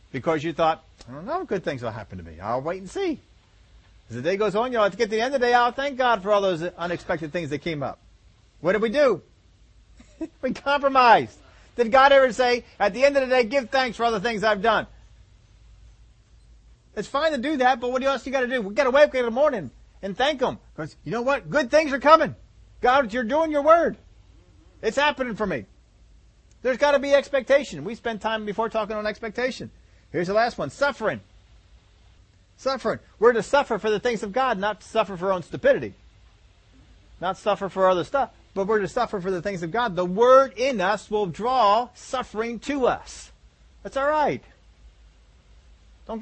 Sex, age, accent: male, 40-59, American